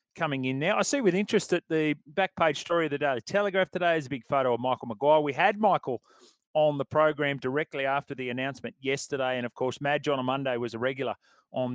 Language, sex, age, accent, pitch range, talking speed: English, male, 30-49, Australian, 125-165 Hz, 235 wpm